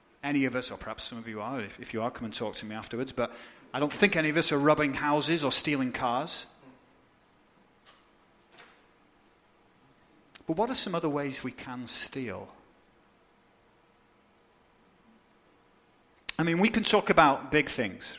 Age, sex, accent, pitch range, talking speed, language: 30-49, male, British, 120-165 Hz, 160 wpm, English